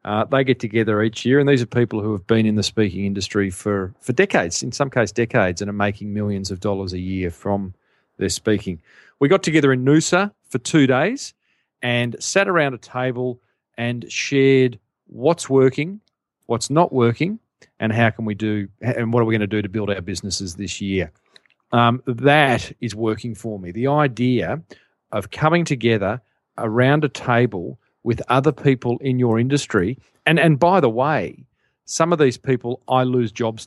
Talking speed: 185 wpm